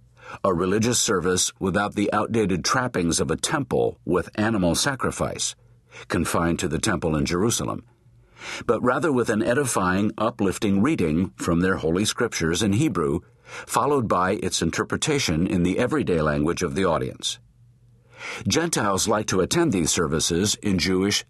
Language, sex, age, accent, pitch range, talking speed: English, male, 50-69, American, 95-120 Hz, 145 wpm